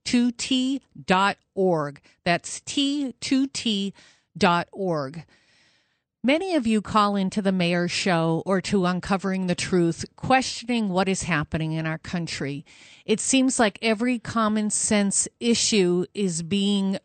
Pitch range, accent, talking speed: 180-240 Hz, American, 115 wpm